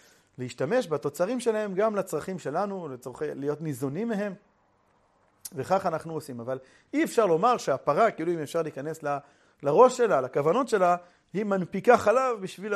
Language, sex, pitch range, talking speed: Hebrew, male, 135-205 Hz, 140 wpm